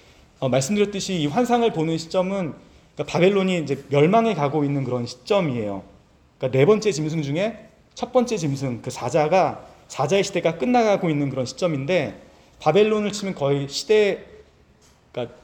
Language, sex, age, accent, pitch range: Korean, male, 40-59, native, 140-190 Hz